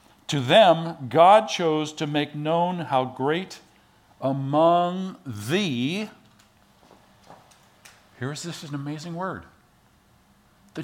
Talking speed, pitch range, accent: 100 wpm, 125-170 Hz, American